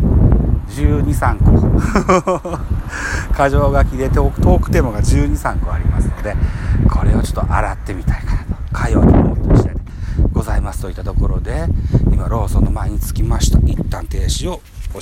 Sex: male